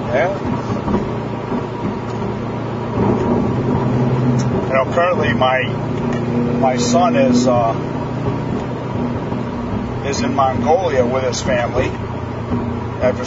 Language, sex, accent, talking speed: English, male, American, 70 wpm